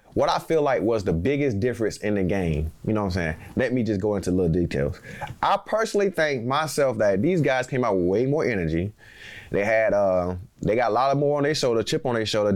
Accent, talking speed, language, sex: American, 245 wpm, English, male